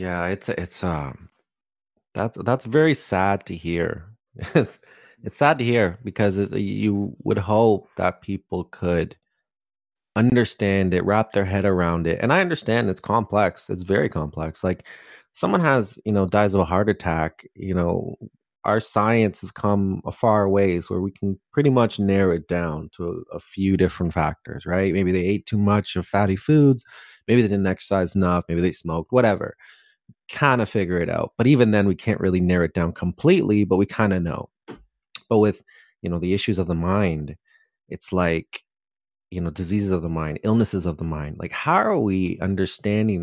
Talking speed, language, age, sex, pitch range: 190 wpm, English, 30-49, male, 90-110 Hz